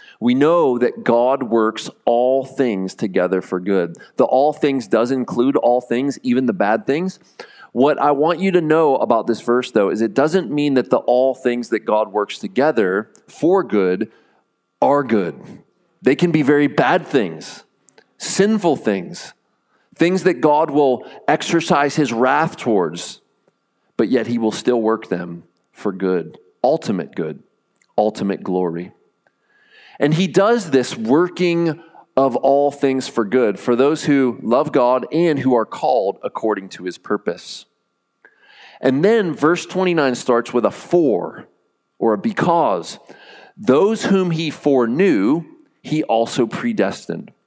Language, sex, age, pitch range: English, male, 30-49, 115-170 Hz